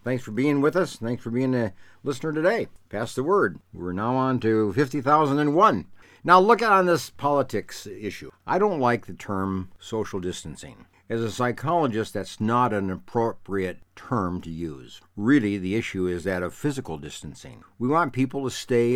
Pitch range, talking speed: 95-130 Hz, 175 wpm